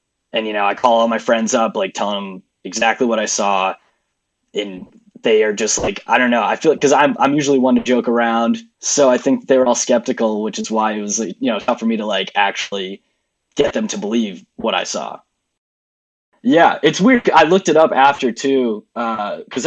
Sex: male